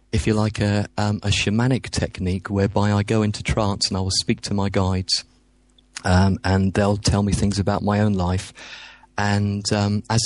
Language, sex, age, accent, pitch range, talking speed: English, male, 30-49, British, 100-110 Hz, 185 wpm